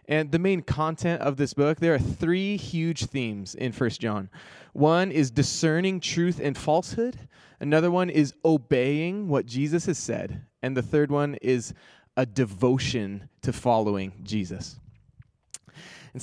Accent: American